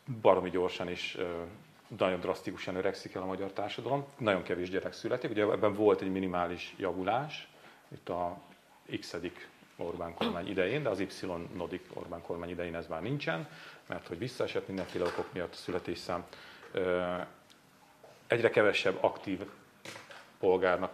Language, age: Hungarian, 40-59